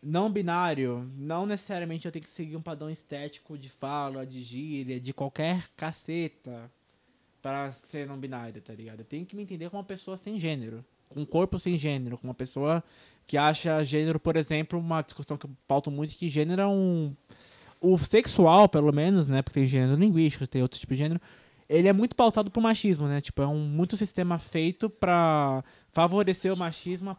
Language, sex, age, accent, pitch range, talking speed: Portuguese, male, 20-39, Brazilian, 140-180 Hz, 190 wpm